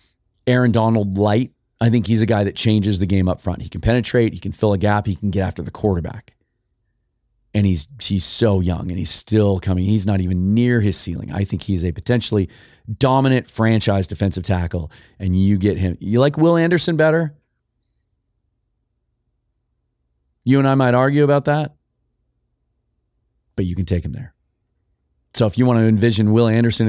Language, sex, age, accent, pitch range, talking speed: English, male, 30-49, American, 100-130 Hz, 185 wpm